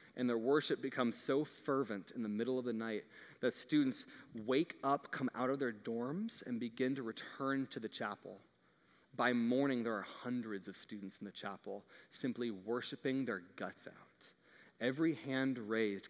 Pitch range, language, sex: 125-165 Hz, English, male